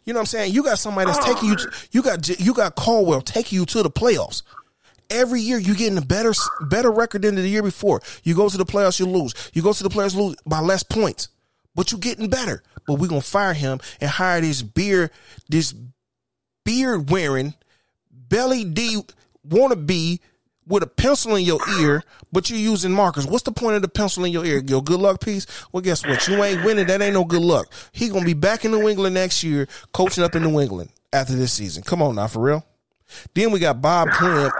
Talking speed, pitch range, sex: 230 wpm, 135-205 Hz, male